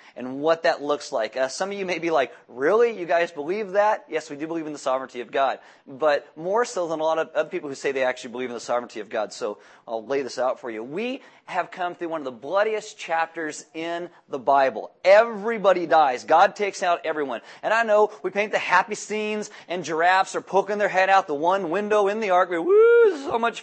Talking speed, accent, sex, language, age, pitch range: 240 wpm, American, male, English, 30-49, 155-215 Hz